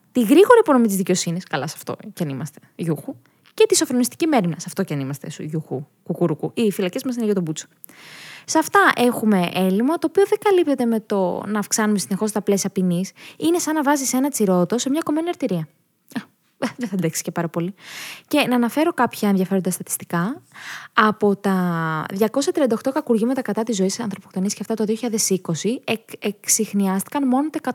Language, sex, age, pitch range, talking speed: Greek, female, 20-39, 180-245 Hz, 180 wpm